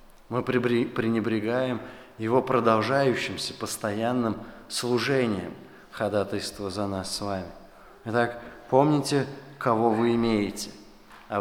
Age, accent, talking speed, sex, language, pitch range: 20-39, native, 90 wpm, male, Russian, 105-130 Hz